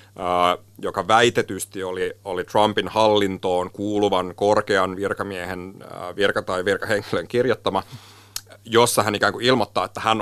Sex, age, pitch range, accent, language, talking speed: male, 30-49, 95-110 Hz, native, Finnish, 130 wpm